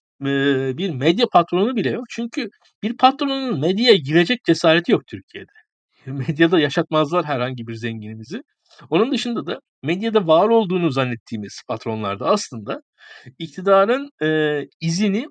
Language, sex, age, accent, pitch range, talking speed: Turkish, male, 60-79, native, 140-205 Hz, 115 wpm